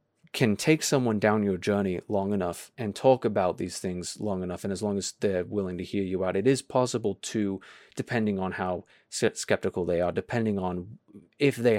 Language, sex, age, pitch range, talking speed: English, male, 30-49, 95-115 Hz, 200 wpm